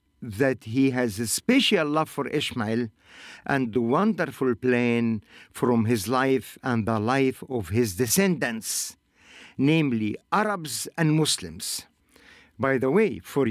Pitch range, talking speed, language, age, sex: 120-175 Hz, 130 wpm, English, 50-69, male